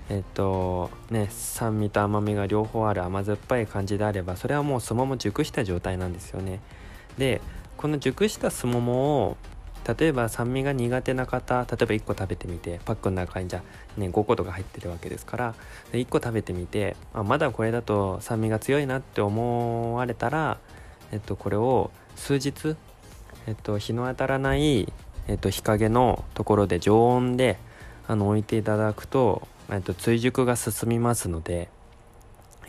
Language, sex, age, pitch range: Japanese, male, 20-39, 100-125 Hz